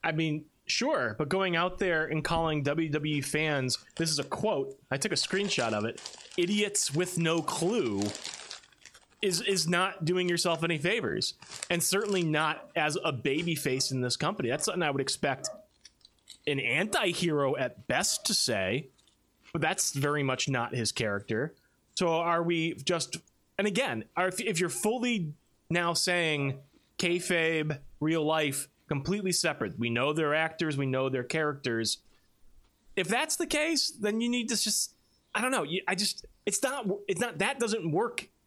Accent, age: American, 20-39